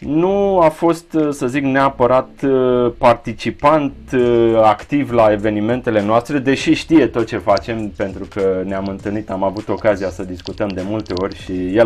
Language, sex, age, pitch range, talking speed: Romanian, male, 30-49, 100-125 Hz, 150 wpm